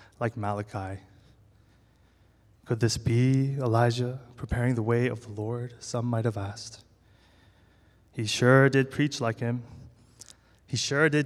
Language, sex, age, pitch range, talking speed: English, male, 20-39, 110-130 Hz, 135 wpm